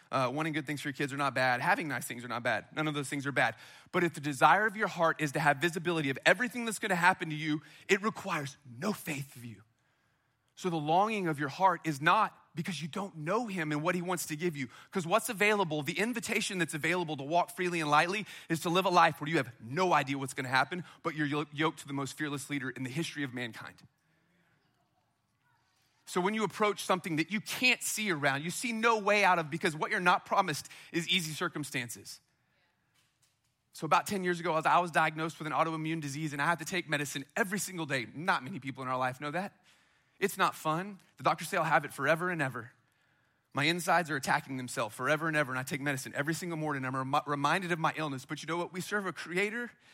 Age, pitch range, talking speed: 30-49, 145-185 Hz, 240 wpm